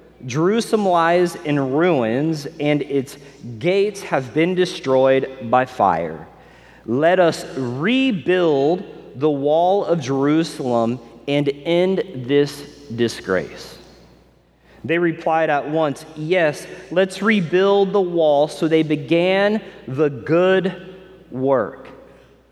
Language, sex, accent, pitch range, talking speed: English, male, American, 145-185 Hz, 100 wpm